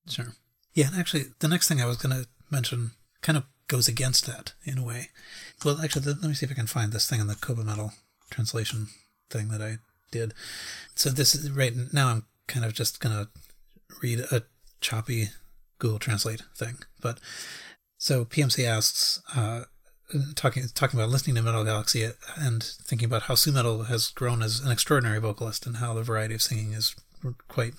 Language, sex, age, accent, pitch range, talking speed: English, male, 30-49, American, 115-135 Hz, 195 wpm